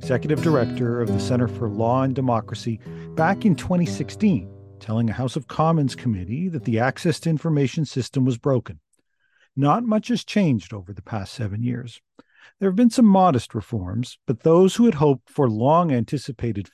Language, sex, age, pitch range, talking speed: English, male, 40-59, 115-160 Hz, 170 wpm